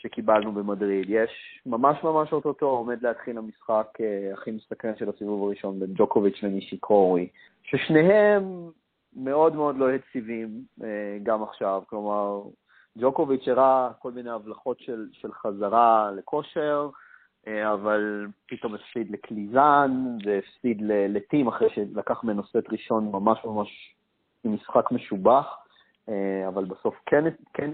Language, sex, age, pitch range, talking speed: Hebrew, male, 30-49, 100-140 Hz, 120 wpm